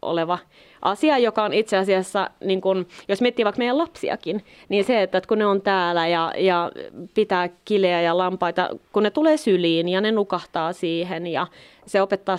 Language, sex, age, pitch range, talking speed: Finnish, female, 20-39, 175-205 Hz, 175 wpm